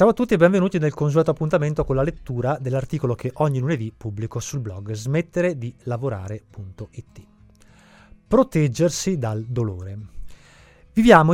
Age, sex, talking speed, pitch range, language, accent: 30-49, male, 130 wpm, 110-170 Hz, Italian, native